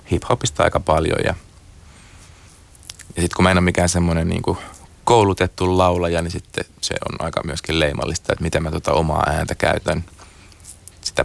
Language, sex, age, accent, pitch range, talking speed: Finnish, male, 30-49, native, 80-95 Hz, 160 wpm